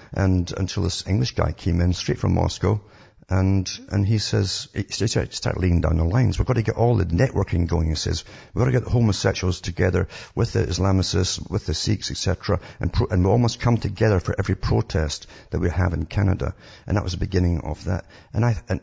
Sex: male